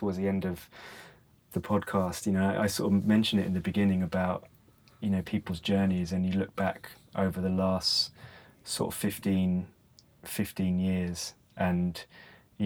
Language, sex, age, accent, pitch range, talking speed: English, male, 20-39, British, 90-100 Hz, 170 wpm